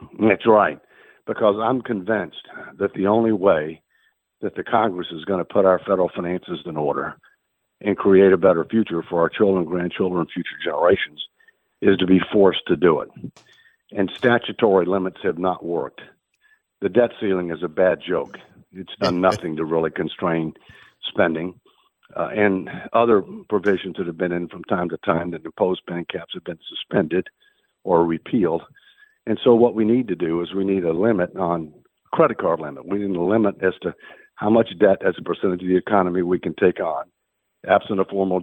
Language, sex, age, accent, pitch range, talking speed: English, male, 60-79, American, 90-110 Hz, 185 wpm